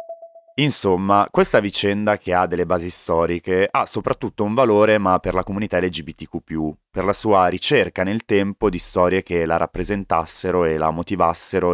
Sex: male